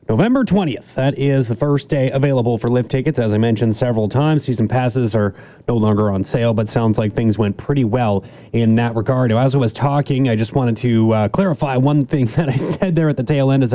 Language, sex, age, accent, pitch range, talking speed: English, male, 30-49, American, 120-165 Hz, 235 wpm